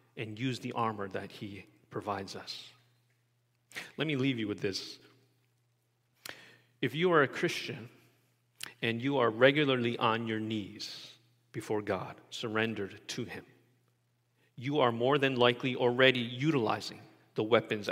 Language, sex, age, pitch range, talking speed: English, male, 40-59, 120-160 Hz, 135 wpm